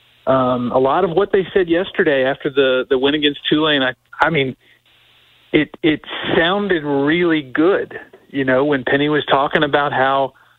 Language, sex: English, male